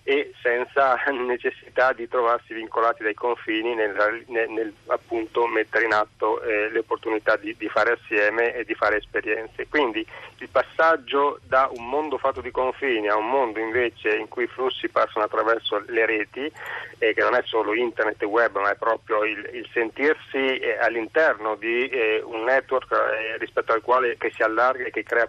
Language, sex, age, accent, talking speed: Italian, male, 40-59, native, 185 wpm